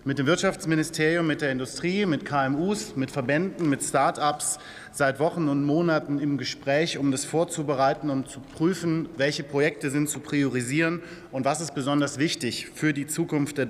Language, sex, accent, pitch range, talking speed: German, male, German, 135-165 Hz, 165 wpm